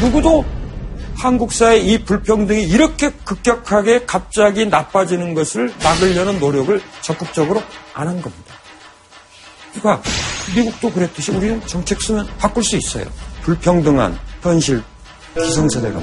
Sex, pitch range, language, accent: male, 120-205 Hz, Korean, native